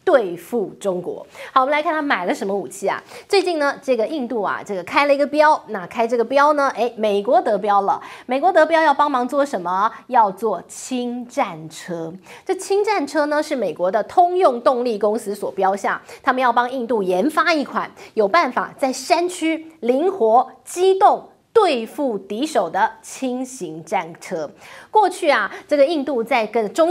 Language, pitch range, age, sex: Chinese, 215-300 Hz, 30-49, female